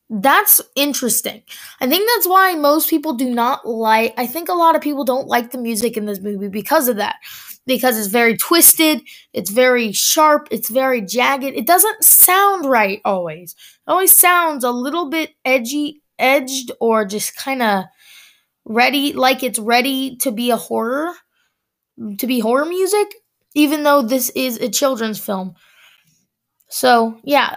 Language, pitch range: English, 225-310 Hz